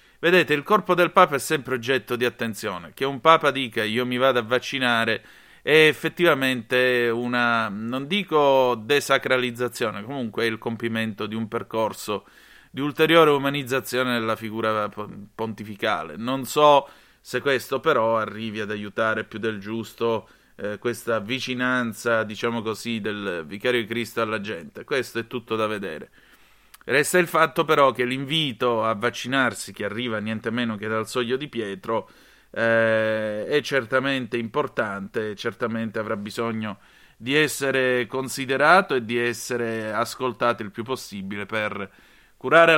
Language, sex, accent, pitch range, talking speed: Italian, male, native, 110-145 Hz, 140 wpm